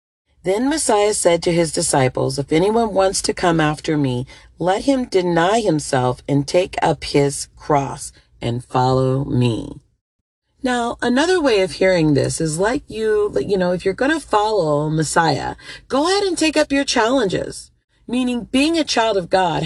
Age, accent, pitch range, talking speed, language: 40-59, American, 155-255 Hz, 170 wpm, English